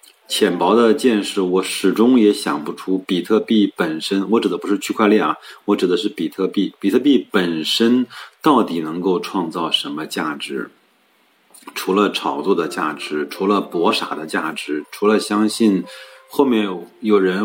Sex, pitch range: male, 90-110 Hz